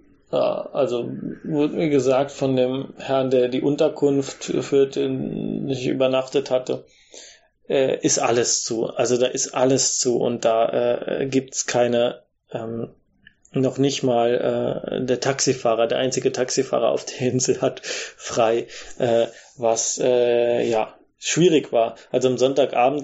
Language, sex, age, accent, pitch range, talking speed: German, male, 20-39, German, 125-145 Hz, 130 wpm